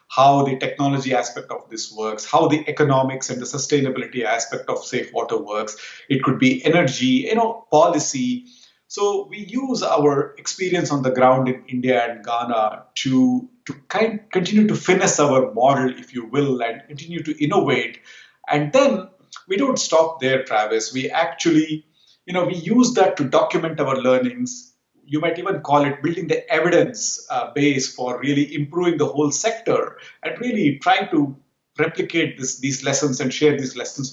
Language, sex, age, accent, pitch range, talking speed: English, male, 50-69, Indian, 135-200 Hz, 175 wpm